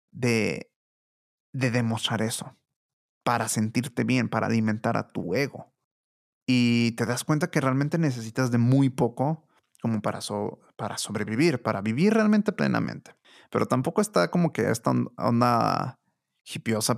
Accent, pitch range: Mexican, 110-140 Hz